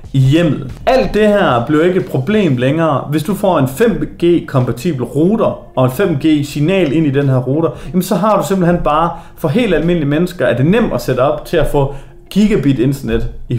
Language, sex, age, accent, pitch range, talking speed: Danish, male, 30-49, native, 135-180 Hz, 200 wpm